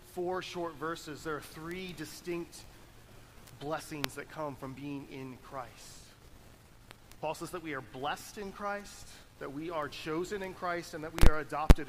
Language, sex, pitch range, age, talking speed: English, male, 145-190 Hz, 30-49, 165 wpm